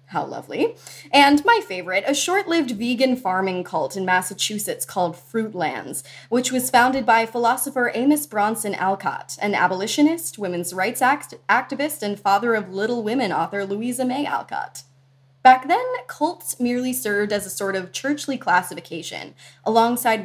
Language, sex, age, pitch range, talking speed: English, female, 20-39, 170-240 Hz, 140 wpm